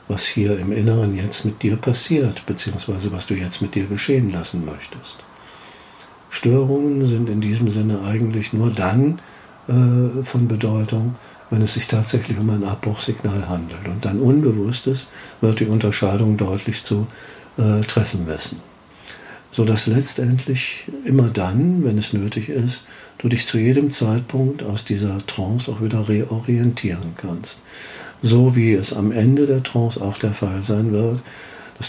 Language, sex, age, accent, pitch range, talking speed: German, male, 50-69, German, 100-120 Hz, 150 wpm